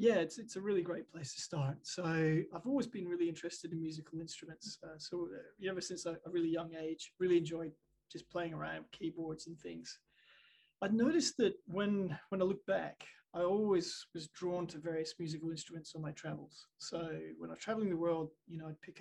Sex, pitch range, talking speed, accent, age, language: male, 165-205 Hz, 205 wpm, Australian, 20-39, English